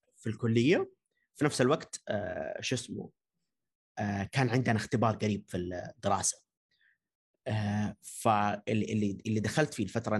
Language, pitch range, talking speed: Arabic, 105-140 Hz, 125 wpm